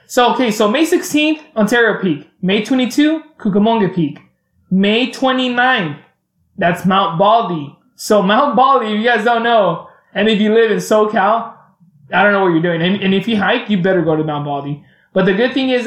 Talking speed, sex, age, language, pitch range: 195 wpm, male, 20-39, English, 190-230 Hz